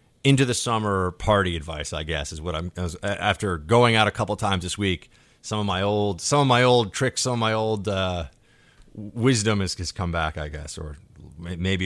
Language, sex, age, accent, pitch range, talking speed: English, male, 30-49, American, 85-110 Hz, 210 wpm